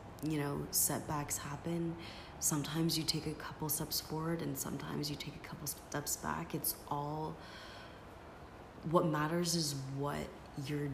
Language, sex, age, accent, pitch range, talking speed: English, female, 30-49, American, 140-155 Hz, 145 wpm